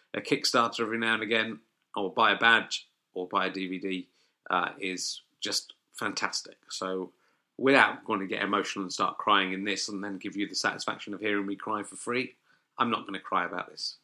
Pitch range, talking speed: 95-115 Hz, 205 wpm